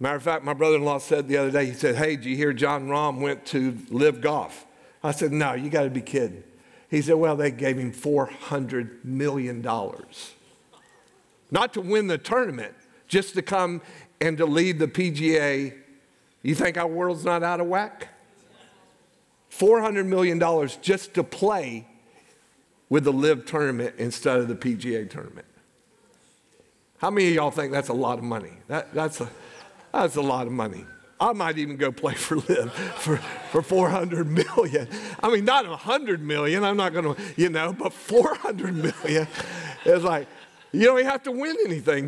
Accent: American